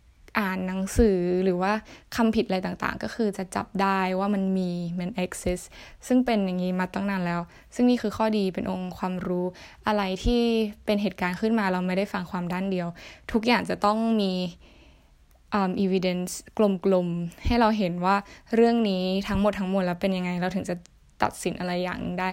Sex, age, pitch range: female, 10-29, 180-215 Hz